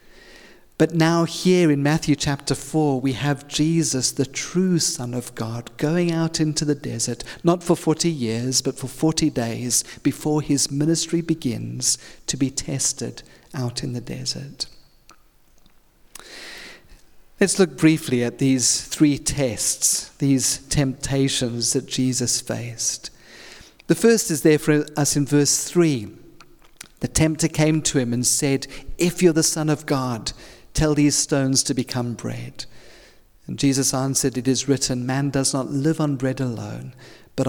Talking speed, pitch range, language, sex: 150 wpm, 125-160 Hz, English, male